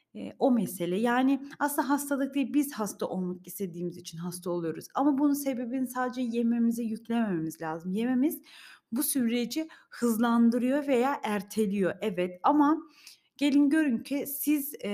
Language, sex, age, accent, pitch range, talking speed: Turkish, female, 30-49, native, 200-265 Hz, 130 wpm